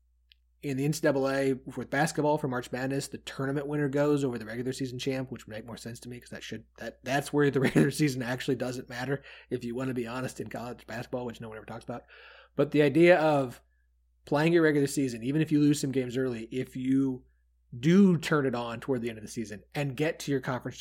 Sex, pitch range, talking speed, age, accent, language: male, 110-150 Hz, 240 wpm, 30-49, American, English